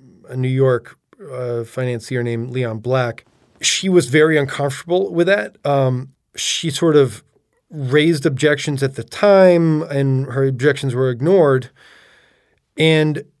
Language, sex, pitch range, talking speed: English, male, 125-150 Hz, 130 wpm